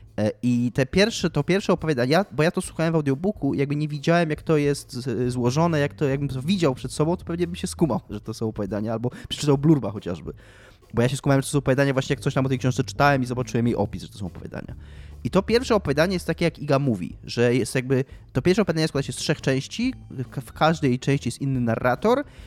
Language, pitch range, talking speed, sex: Polish, 120-170 Hz, 225 wpm, male